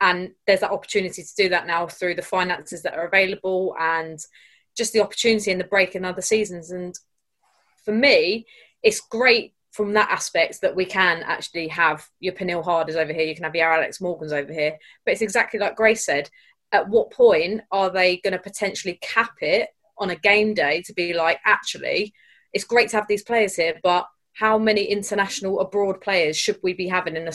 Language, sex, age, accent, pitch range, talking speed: English, female, 20-39, British, 175-215 Hz, 205 wpm